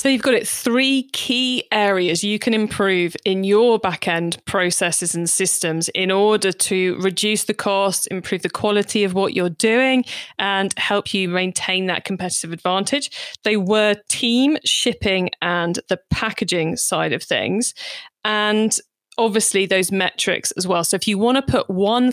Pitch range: 185-225 Hz